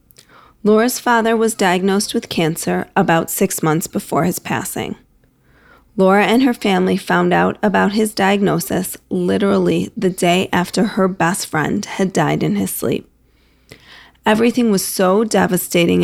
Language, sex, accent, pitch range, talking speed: English, female, American, 165-210 Hz, 140 wpm